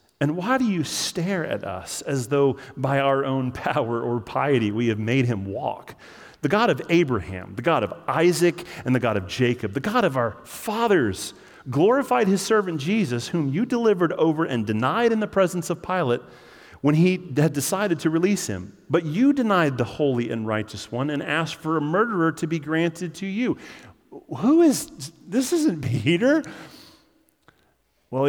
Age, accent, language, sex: 40-59, American, English, male